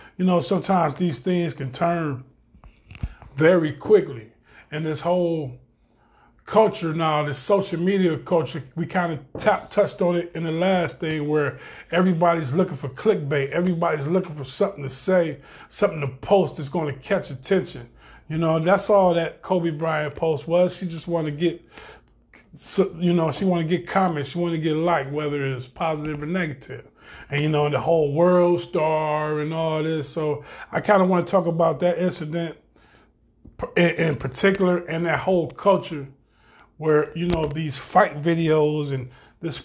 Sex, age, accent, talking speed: male, 20-39, American, 170 wpm